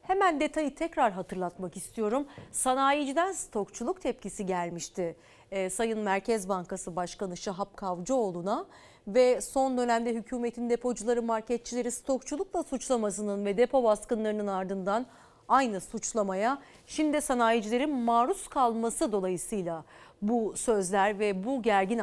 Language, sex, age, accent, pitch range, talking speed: Turkish, female, 40-59, native, 200-270 Hz, 110 wpm